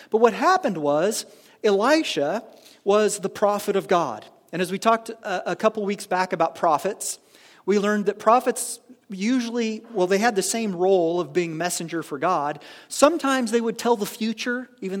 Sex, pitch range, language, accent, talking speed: male, 190-255 Hz, English, American, 175 wpm